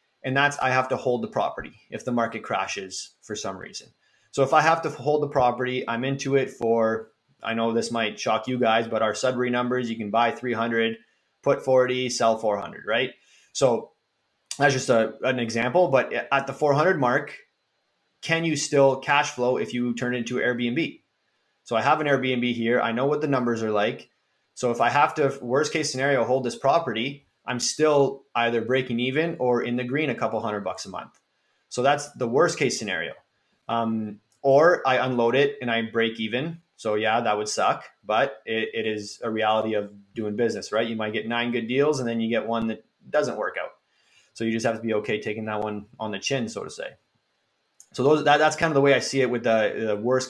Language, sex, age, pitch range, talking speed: English, male, 20-39, 115-135 Hz, 215 wpm